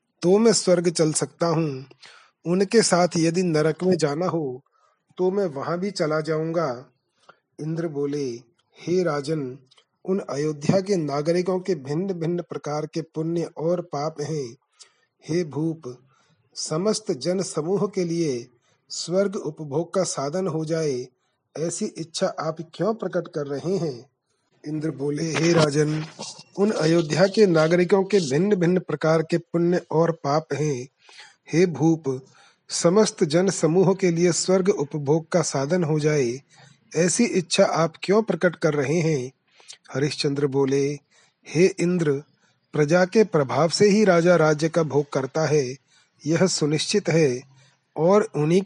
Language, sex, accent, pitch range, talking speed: Hindi, male, native, 150-180 Hz, 140 wpm